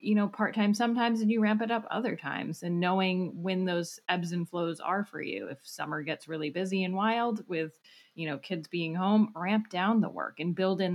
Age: 30-49